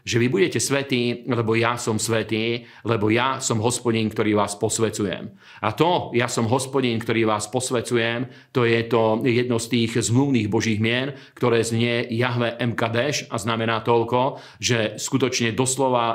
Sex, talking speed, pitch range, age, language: male, 155 wpm, 115-125 Hz, 40-59, Slovak